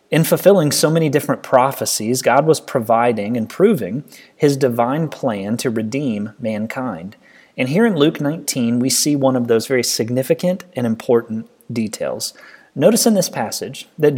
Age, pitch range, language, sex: 30-49, 120-165 Hz, English, male